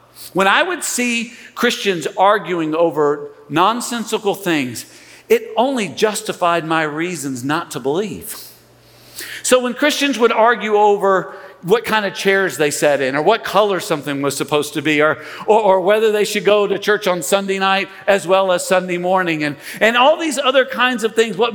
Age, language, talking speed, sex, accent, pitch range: 50-69, English, 180 wpm, male, American, 170-240 Hz